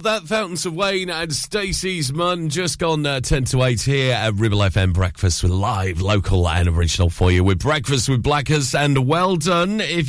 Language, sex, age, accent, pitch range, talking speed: English, male, 40-59, British, 100-150 Hz, 195 wpm